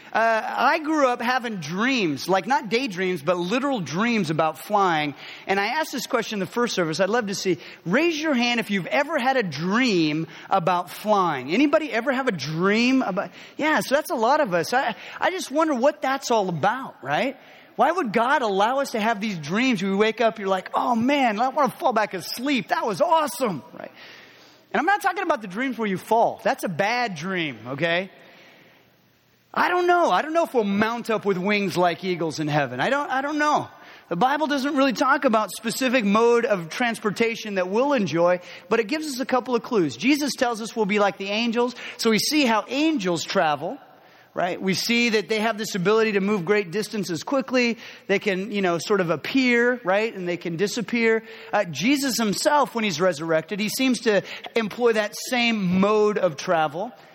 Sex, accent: male, American